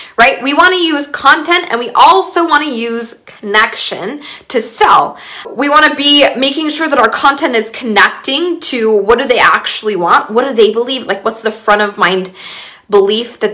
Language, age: English, 20-39